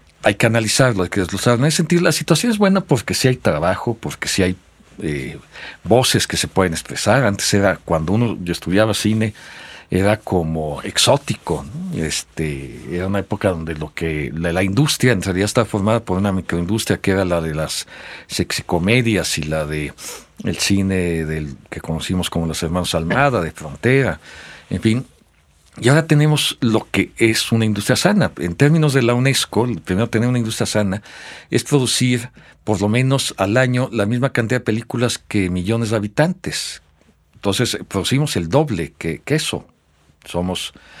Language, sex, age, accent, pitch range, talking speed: Spanish, male, 50-69, Mexican, 90-125 Hz, 175 wpm